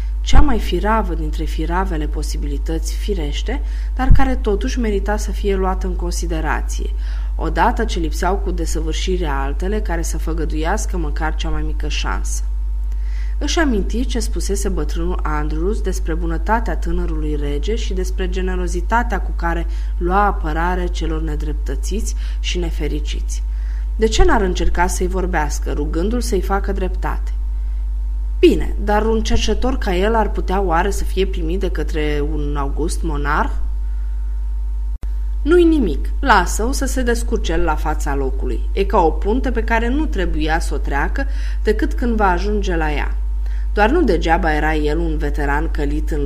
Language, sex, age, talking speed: Romanian, female, 20-39, 150 wpm